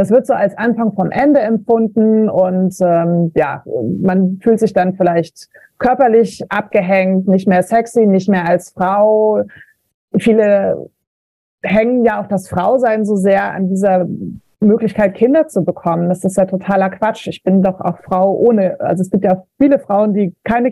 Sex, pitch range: female, 185-225 Hz